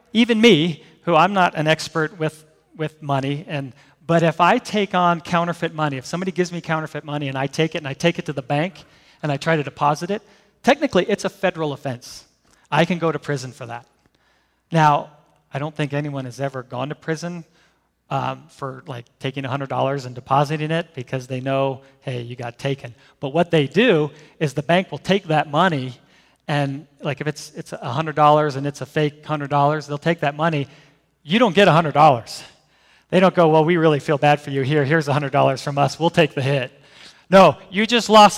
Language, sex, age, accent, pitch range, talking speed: English, male, 40-59, American, 145-185 Hz, 205 wpm